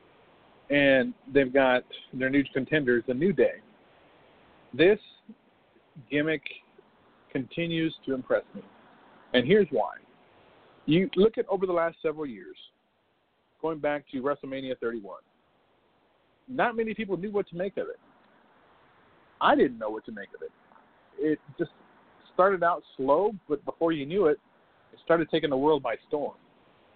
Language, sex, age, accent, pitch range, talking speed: English, male, 40-59, American, 130-195 Hz, 145 wpm